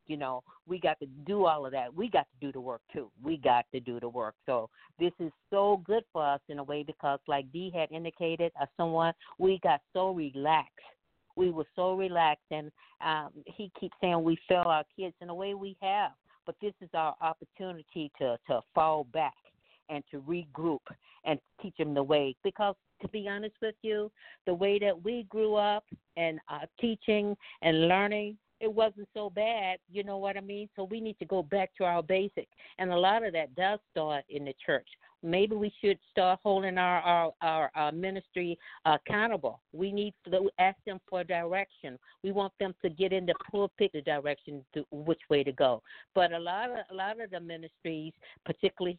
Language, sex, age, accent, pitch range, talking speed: English, female, 50-69, American, 160-200 Hz, 205 wpm